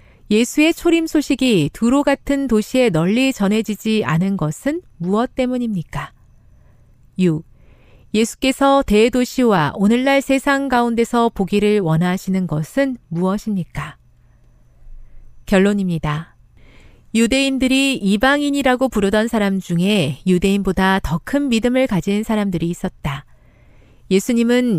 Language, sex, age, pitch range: Korean, female, 40-59, 175-245 Hz